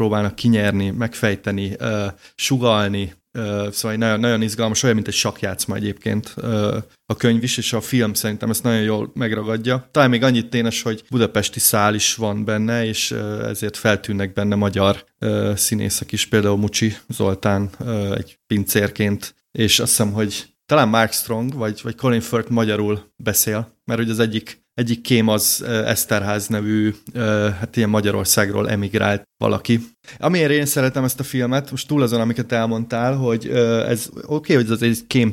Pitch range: 105-120 Hz